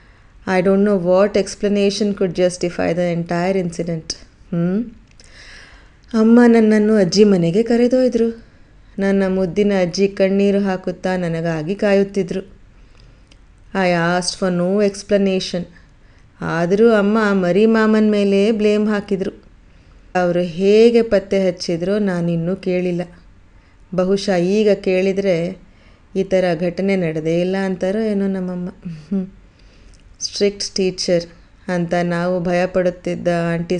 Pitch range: 170-200 Hz